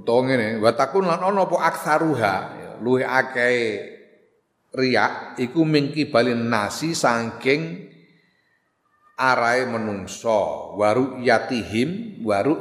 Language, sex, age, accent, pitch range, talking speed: Indonesian, male, 40-59, native, 115-145 Hz, 85 wpm